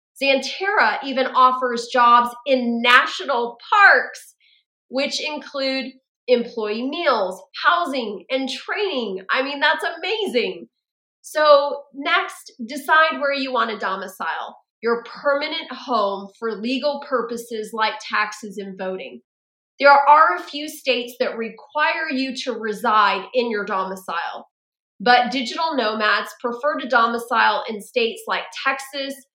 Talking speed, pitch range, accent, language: 120 wpm, 220-280 Hz, American, English